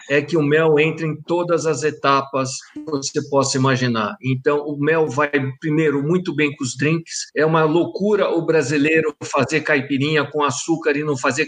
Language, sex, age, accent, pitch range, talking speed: Portuguese, male, 60-79, Brazilian, 155-195 Hz, 185 wpm